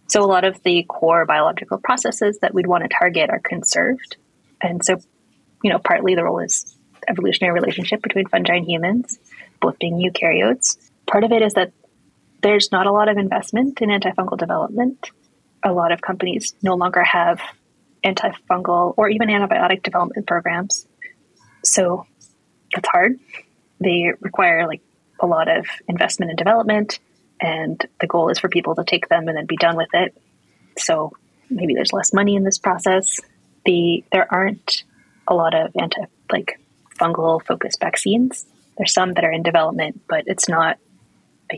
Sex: female